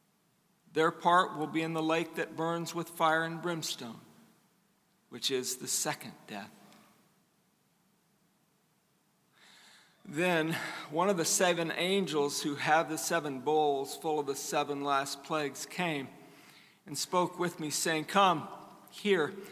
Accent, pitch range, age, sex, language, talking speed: American, 155-200 Hz, 50-69, male, English, 130 wpm